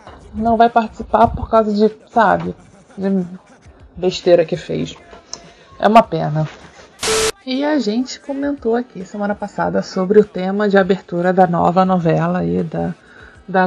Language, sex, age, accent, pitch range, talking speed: Portuguese, female, 20-39, Brazilian, 185-235 Hz, 140 wpm